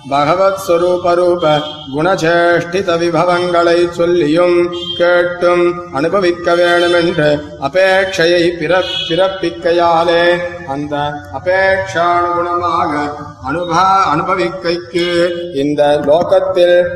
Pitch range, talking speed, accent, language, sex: 165-180 Hz, 55 wpm, native, Tamil, male